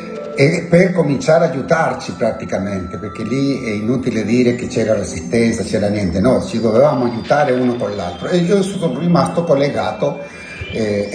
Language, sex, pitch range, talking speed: Italian, male, 115-170 Hz, 155 wpm